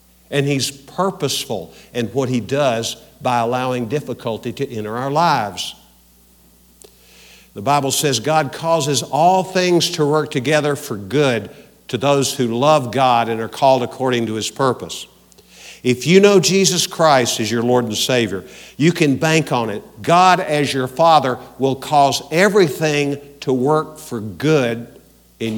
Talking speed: 150 wpm